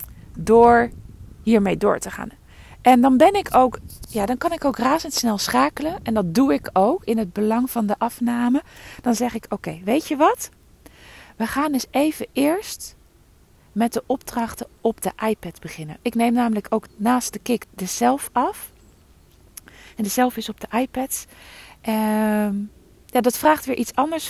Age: 40-59